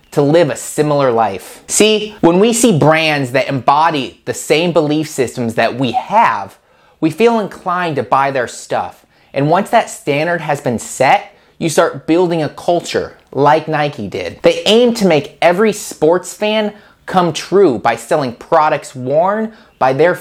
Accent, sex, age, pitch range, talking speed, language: American, male, 30-49, 135-195 Hz, 165 wpm, English